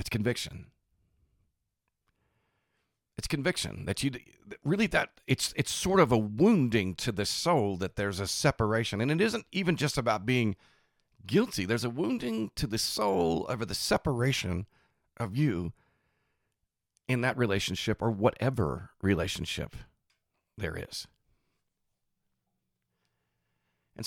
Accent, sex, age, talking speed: American, male, 50-69, 120 wpm